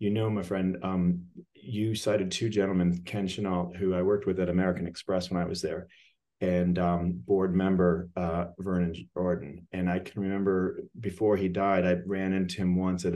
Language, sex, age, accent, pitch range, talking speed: English, male, 30-49, American, 90-105 Hz, 190 wpm